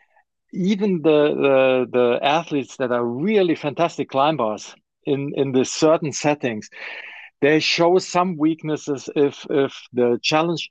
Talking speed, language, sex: 130 wpm, English, male